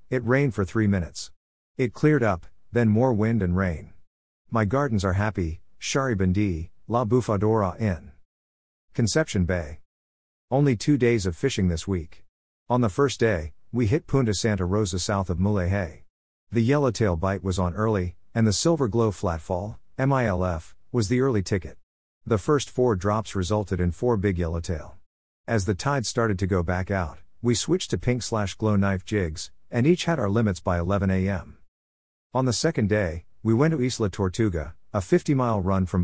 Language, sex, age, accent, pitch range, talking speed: English, male, 50-69, American, 90-115 Hz, 170 wpm